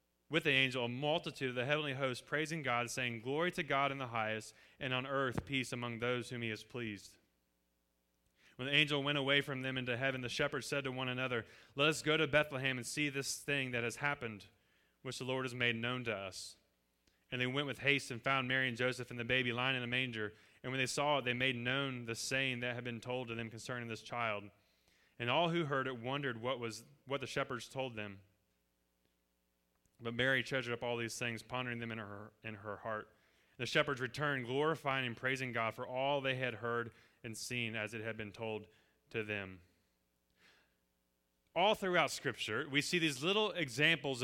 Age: 30-49